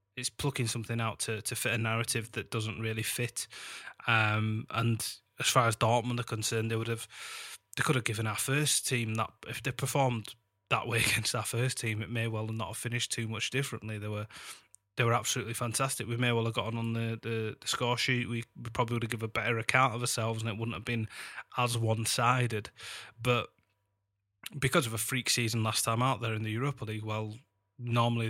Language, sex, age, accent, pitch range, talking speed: English, male, 20-39, British, 110-120 Hz, 215 wpm